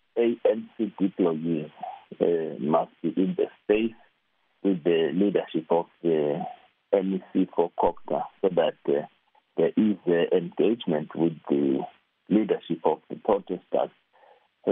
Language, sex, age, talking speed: English, male, 50-69, 120 wpm